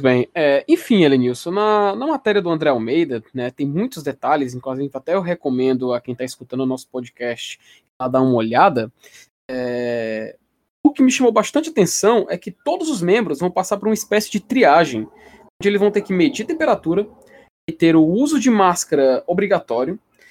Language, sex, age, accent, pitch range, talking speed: Portuguese, male, 20-39, Brazilian, 155-235 Hz, 175 wpm